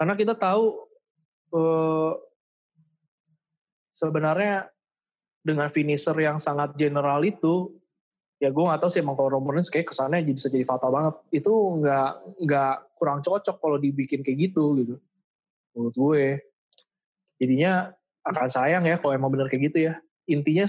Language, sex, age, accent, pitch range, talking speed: Indonesian, male, 20-39, native, 140-175 Hz, 140 wpm